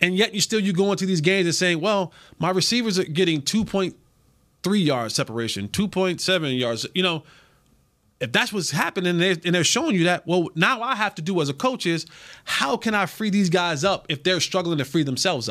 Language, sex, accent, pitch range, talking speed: English, male, American, 165-225 Hz, 215 wpm